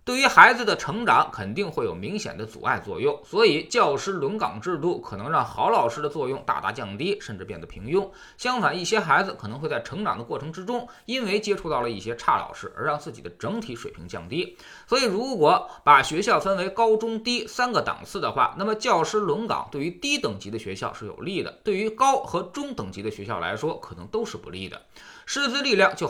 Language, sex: Chinese, male